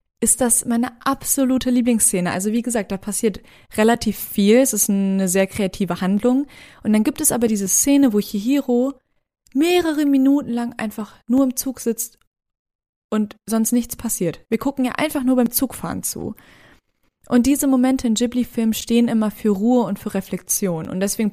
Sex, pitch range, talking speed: female, 195-250 Hz, 170 wpm